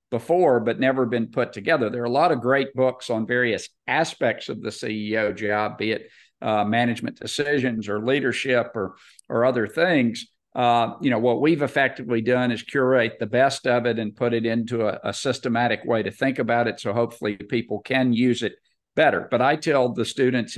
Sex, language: male, English